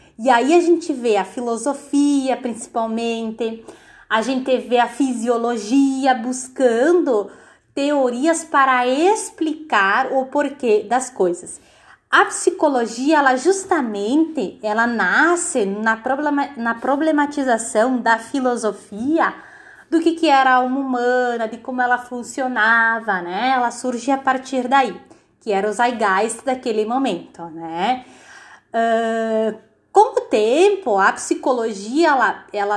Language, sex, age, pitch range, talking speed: Portuguese, female, 20-39, 225-285 Hz, 115 wpm